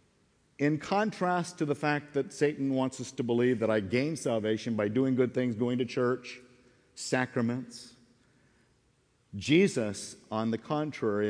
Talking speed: 145 wpm